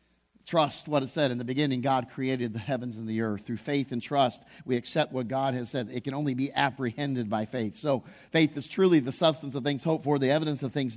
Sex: male